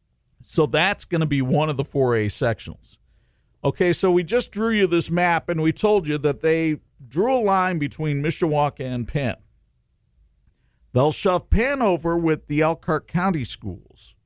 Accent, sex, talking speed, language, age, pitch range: American, male, 170 wpm, English, 50-69, 110-155 Hz